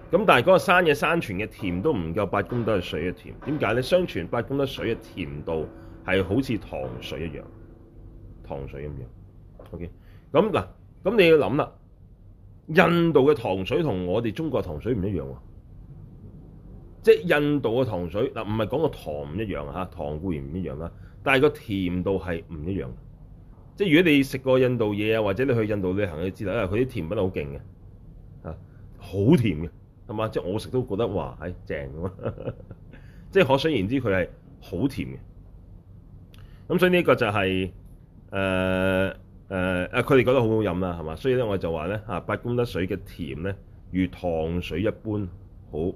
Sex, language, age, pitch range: male, Chinese, 30-49, 90-115 Hz